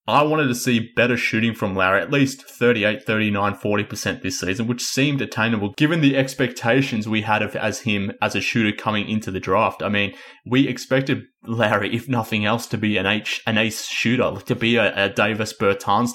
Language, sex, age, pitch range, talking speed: English, male, 20-39, 100-120 Hz, 195 wpm